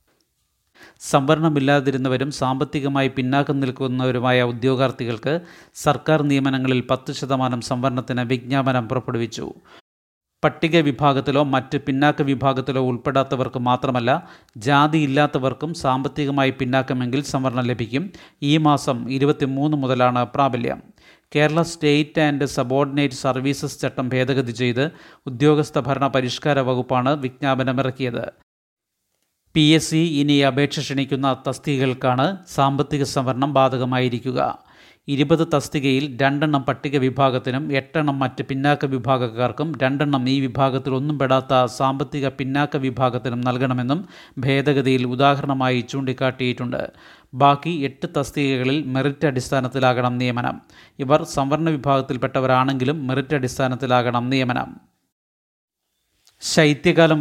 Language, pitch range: Malayalam, 130-145 Hz